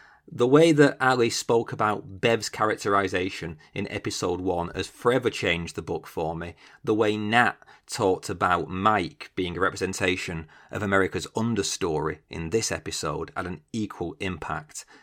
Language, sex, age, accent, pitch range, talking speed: English, male, 30-49, British, 95-125 Hz, 150 wpm